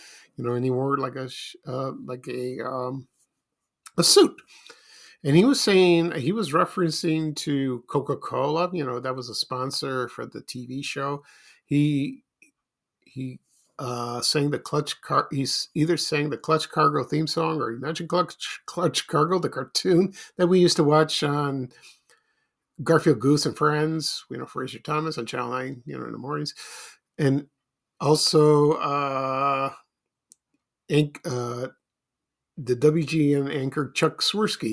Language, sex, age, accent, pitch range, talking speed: English, male, 50-69, American, 130-170 Hz, 145 wpm